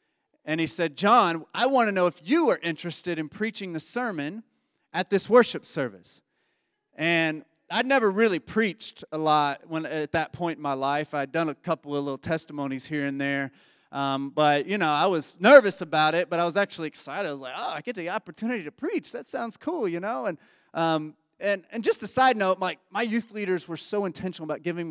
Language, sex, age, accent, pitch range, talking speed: English, male, 30-49, American, 150-195 Hz, 215 wpm